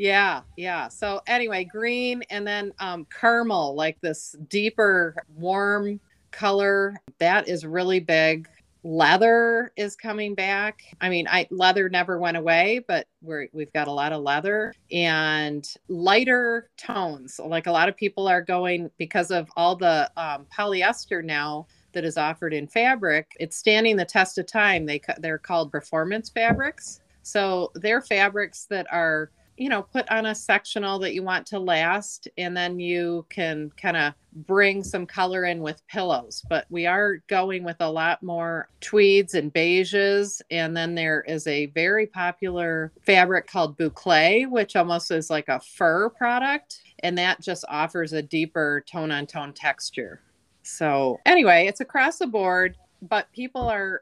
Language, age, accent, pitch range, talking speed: English, 30-49, American, 165-205 Hz, 160 wpm